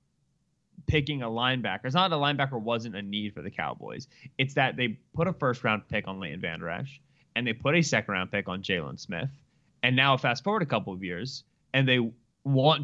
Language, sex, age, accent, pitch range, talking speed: English, male, 20-39, American, 120-170 Hz, 225 wpm